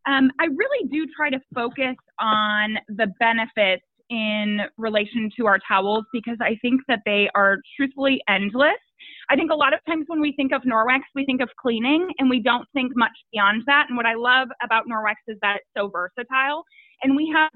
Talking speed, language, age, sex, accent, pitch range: 200 wpm, English, 20-39, female, American, 215-270 Hz